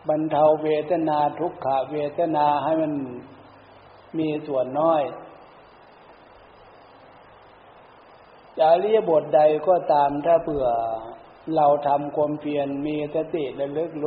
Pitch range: 140-165 Hz